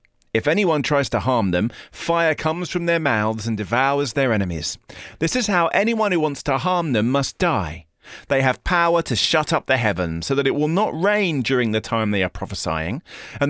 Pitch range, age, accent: 100-155 Hz, 40-59, British